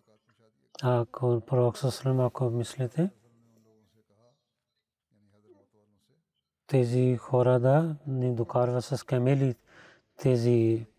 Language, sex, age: Bulgarian, male, 30-49